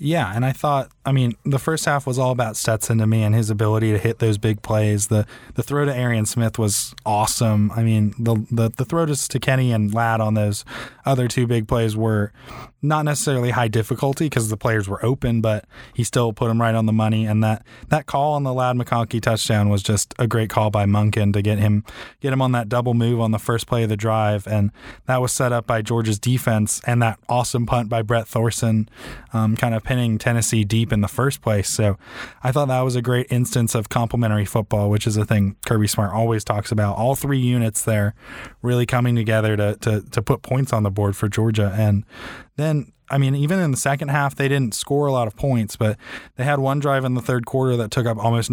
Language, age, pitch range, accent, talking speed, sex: English, 20-39, 110-125 Hz, American, 235 wpm, male